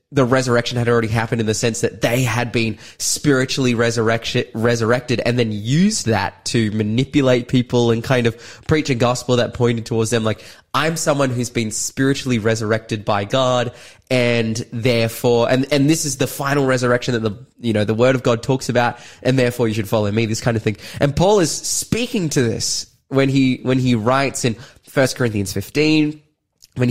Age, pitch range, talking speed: 20-39, 115-135 Hz, 190 wpm